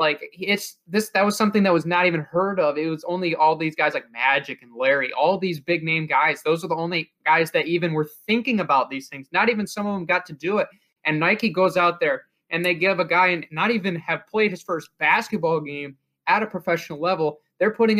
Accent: American